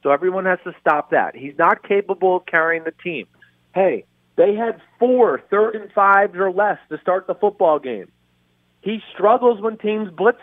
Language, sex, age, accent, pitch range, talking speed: English, male, 40-59, American, 165-210 Hz, 185 wpm